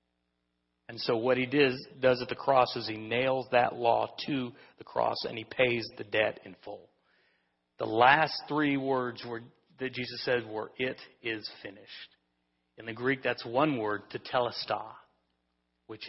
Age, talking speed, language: 40-59, 165 wpm, English